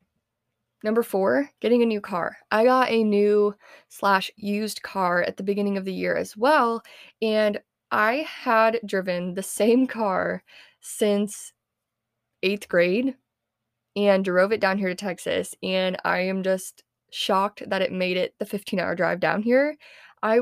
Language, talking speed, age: English, 160 wpm, 20-39